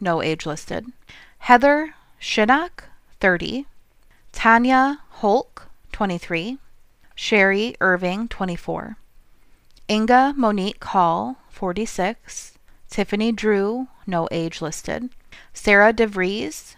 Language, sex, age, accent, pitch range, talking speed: English, female, 30-49, American, 175-230 Hz, 80 wpm